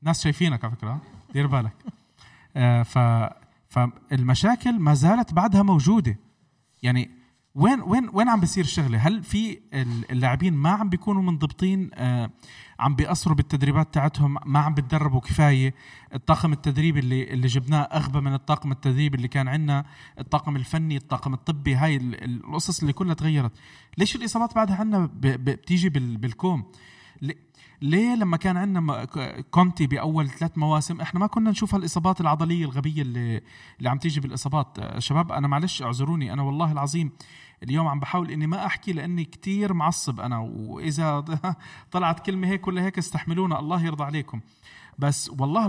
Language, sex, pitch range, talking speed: Arabic, male, 135-180 Hz, 145 wpm